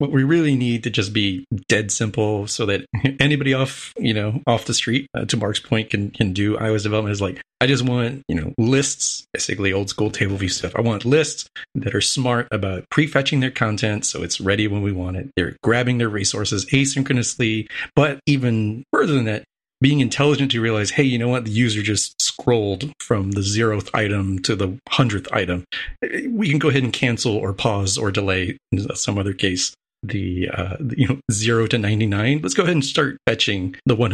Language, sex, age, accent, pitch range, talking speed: English, male, 30-49, American, 100-130 Hz, 205 wpm